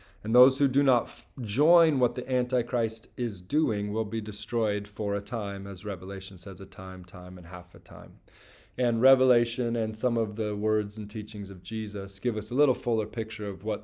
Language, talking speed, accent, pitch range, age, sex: English, 205 wpm, American, 100-125 Hz, 20-39, male